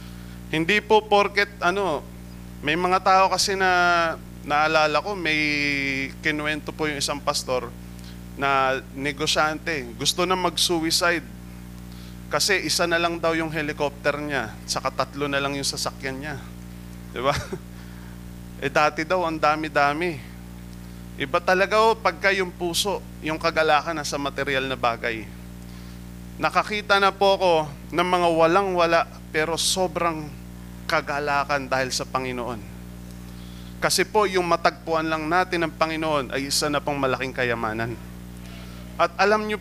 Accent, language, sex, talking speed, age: native, Filipino, male, 135 wpm, 20-39